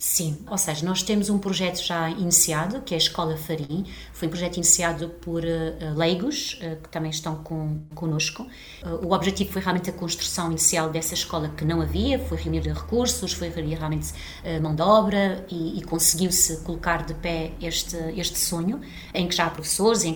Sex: female